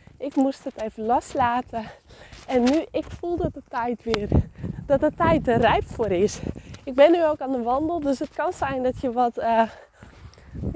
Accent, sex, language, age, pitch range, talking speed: Dutch, female, English, 20-39, 235-290 Hz, 195 wpm